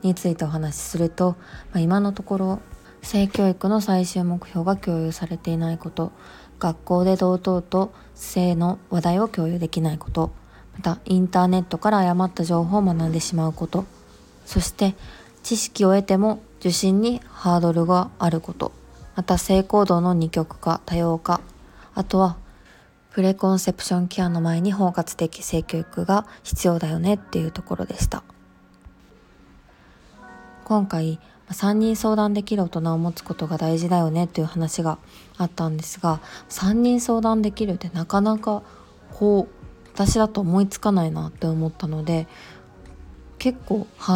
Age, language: 20-39, Japanese